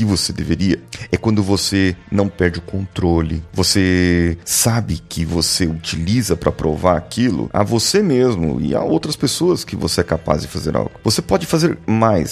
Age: 30-49